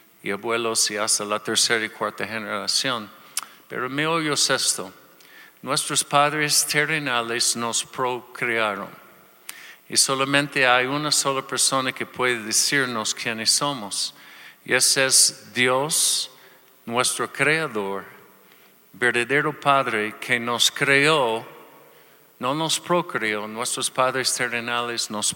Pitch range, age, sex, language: 115-145 Hz, 50-69, male, Spanish